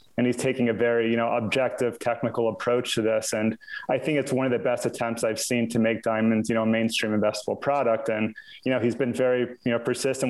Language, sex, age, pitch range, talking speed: English, male, 30-49, 115-125 Hz, 235 wpm